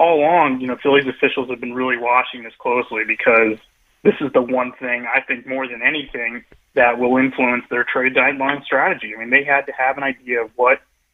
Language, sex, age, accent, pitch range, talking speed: English, male, 20-39, American, 120-140 Hz, 215 wpm